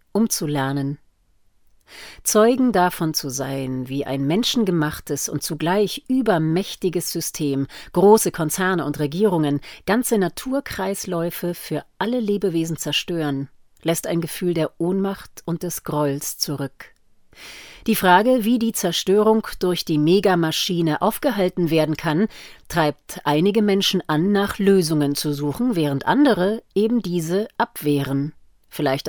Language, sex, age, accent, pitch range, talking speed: German, female, 40-59, German, 150-200 Hz, 115 wpm